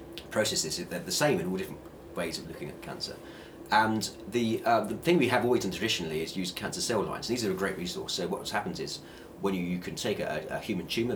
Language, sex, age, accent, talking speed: English, male, 30-49, British, 240 wpm